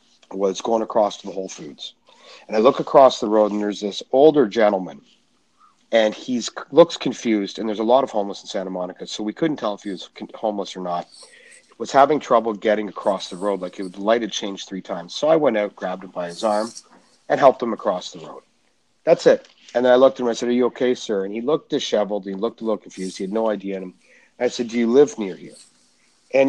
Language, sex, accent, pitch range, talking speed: English, male, American, 100-115 Hz, 245 wpm